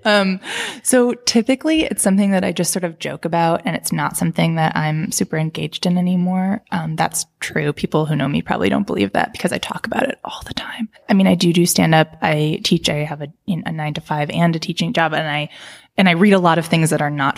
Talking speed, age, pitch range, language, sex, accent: 250 wpm, 20-39, 155-195 Hz, English, female, American